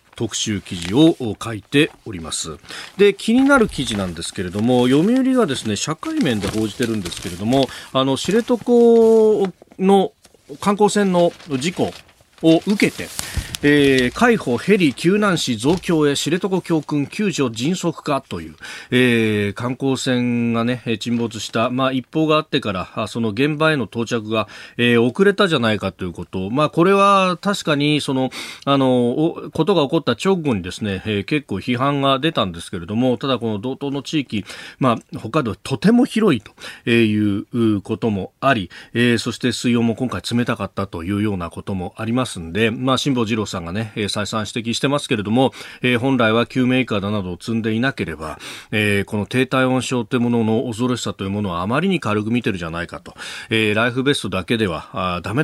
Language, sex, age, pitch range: Japanese, male, 40-59, 110-150 Hz